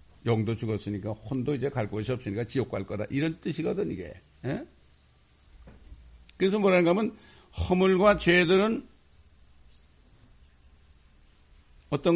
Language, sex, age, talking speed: English, male, 60-79, 95 wpm